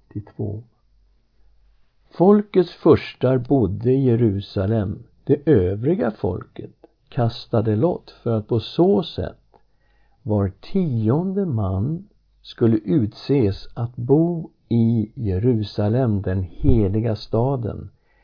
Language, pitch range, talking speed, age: English, 105-135 Hz, 90 wpm, 60-79